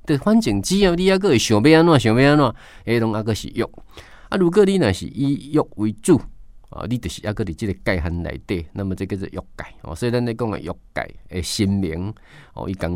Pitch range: 95-120 Hz